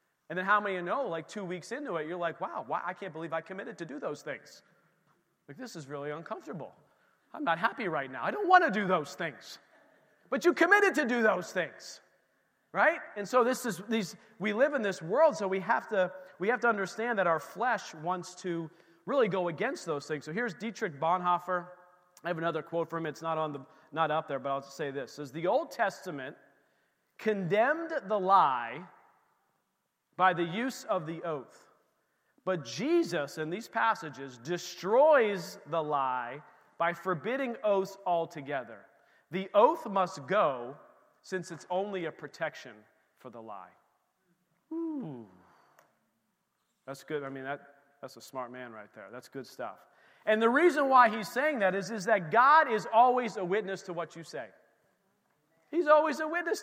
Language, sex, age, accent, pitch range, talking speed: English, male, 40-59, American, 165-225 Hz, 185 wpm